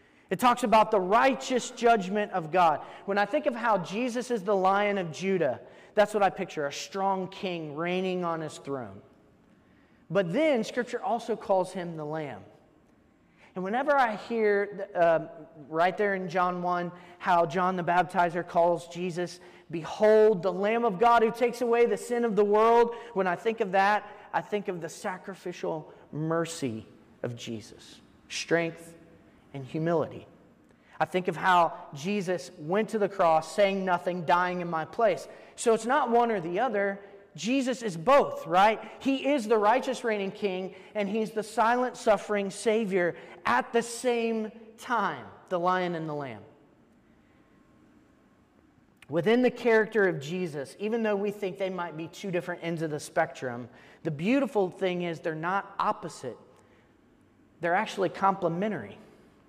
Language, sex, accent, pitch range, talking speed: English, male, American, 170-220 Hz, 160 wpm